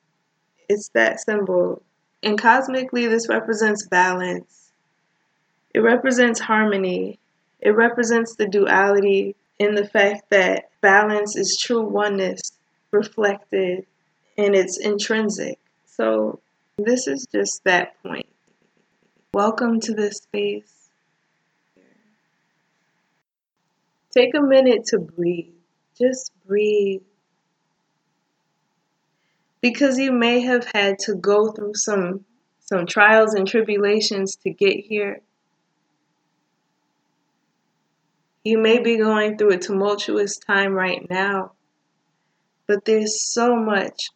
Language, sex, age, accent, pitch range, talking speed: English, female, 20-39, American, 190-220 Hz, 100 wpm